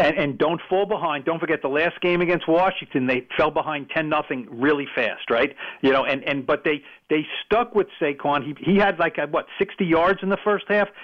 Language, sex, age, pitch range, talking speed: English, male, 50-69, 140-190 Hz, 230 wpm